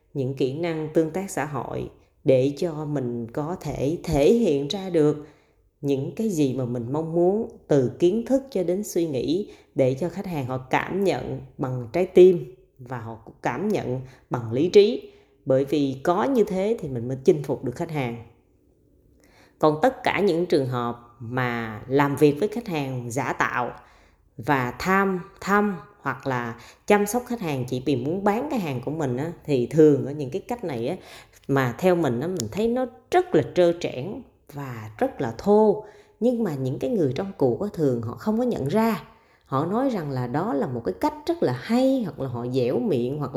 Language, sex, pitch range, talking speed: Vietnamese, female, 130-200 Hz, 205 wpm